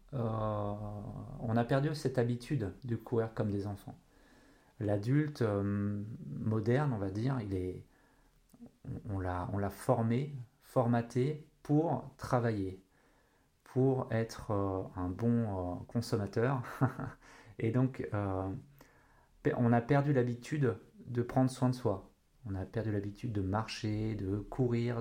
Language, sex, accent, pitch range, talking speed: French, male, French, 110-135 Hz, 130 wpm